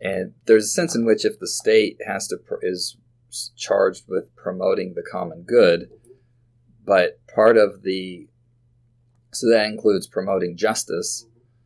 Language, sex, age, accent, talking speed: English, male, 30-49, American, 140 wpm